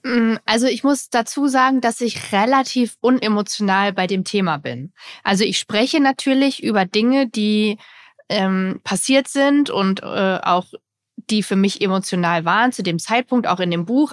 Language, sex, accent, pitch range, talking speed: German, female, German, 195-245 Hz, 160 wpm